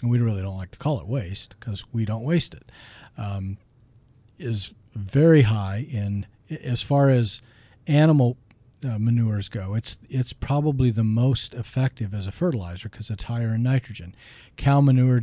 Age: 50-69